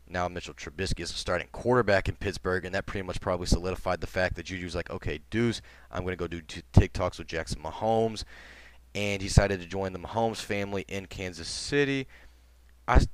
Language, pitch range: English, 85-100 Hz